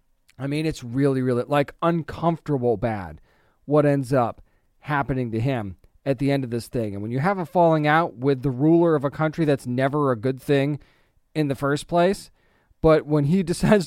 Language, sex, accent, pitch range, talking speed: English, male, American, 135-165 Hz, 200 wpm